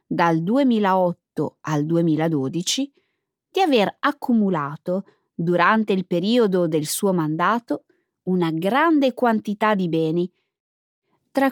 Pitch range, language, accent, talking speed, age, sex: 175-255 Hz, Italian, native, 100 wpm, 20-39, female